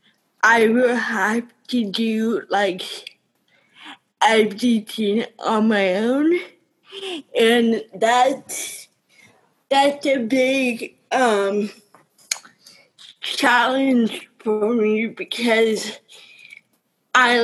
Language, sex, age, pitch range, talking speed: English, female, 20-39, 215-270 Hz, 70 wpm